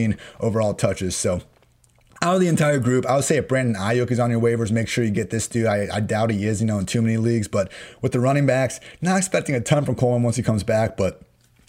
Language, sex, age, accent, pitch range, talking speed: English, male, 30-49, American, 110-130 Hz, 260 wpm